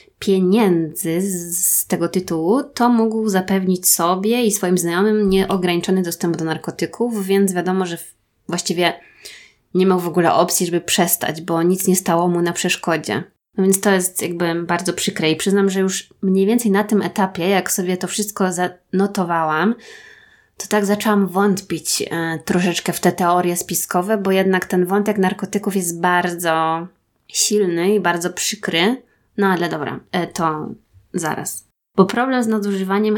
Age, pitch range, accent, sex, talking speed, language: 20-39, 175-200 Hz, native, female, 150 wpm, Polish